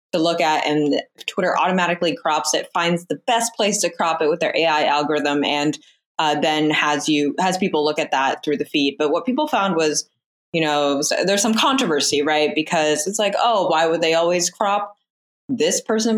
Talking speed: 200 wpm